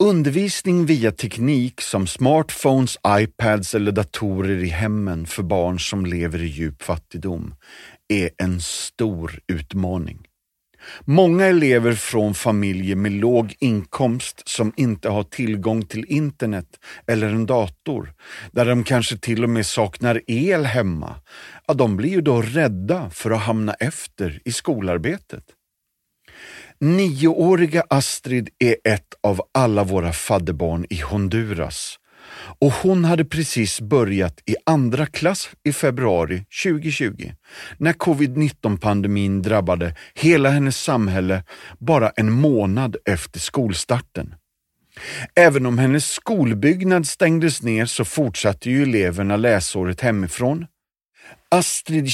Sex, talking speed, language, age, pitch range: male, 120 wpm, Swedish, 40-59, 95-140 Hz